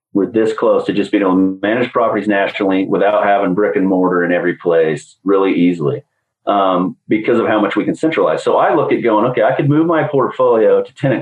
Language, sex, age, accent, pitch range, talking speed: English, male, 40-59, American, 105-150 Hz, 225 wpm